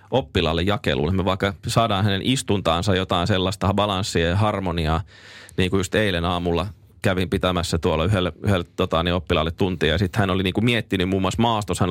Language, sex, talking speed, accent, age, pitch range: Finnish, male, 175 wpm, native, 20-39, 95-110 Hz